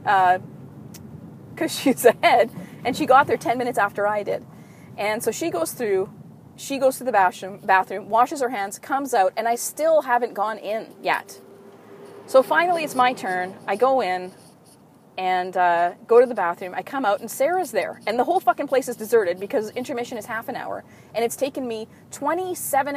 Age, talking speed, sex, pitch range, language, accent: 30-49, 195 wpm, female, 200-275 Hz, English, American